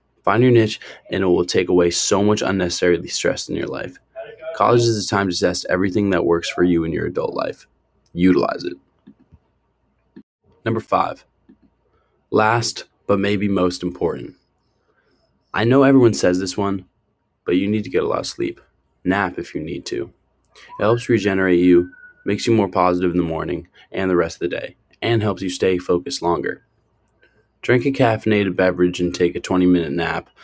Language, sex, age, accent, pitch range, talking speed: English, male, 20-39, American, 90-105 Hz, 180 wpm